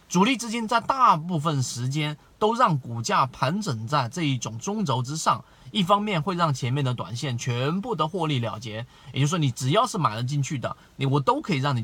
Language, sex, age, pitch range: Chinese, male, 30-49, 125-170 Hz